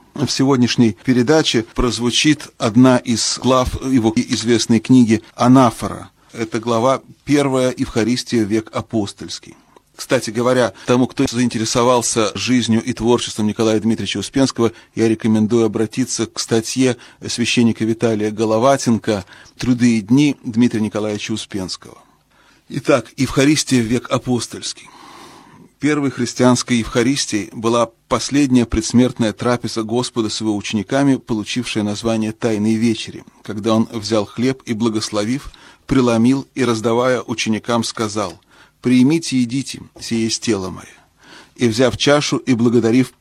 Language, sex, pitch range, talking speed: Russian, male, 110-125 Hz, 115 wpm